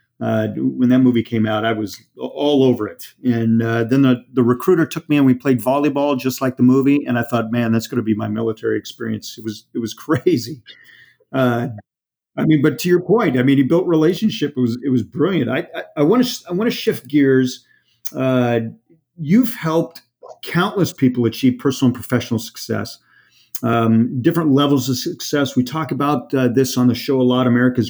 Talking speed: 205 wpm